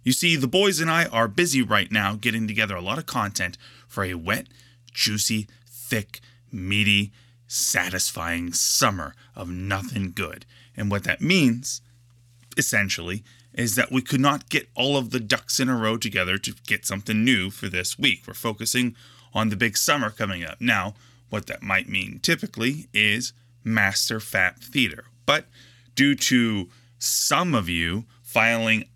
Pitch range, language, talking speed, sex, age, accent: 105-125 Hz, English, 160 wpm, male, 30-49, American